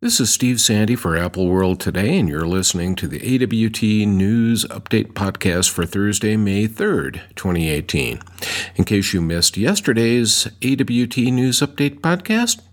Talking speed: 145 wpm